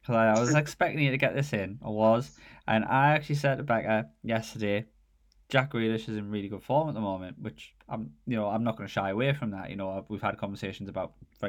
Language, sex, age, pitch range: English, male, 10-29, 95-110 Hz